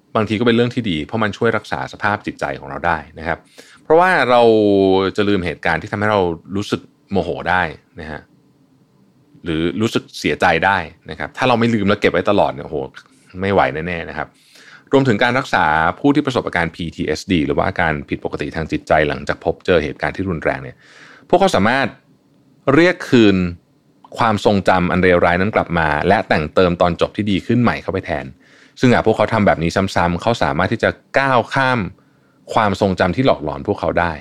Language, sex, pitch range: Thai, male, 85-120 Hz